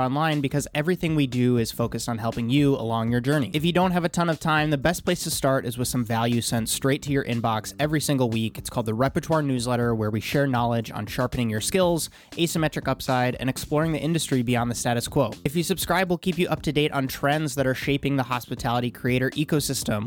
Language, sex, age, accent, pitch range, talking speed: English, male, 20-39, American, 125-160 Hz, 235 wpm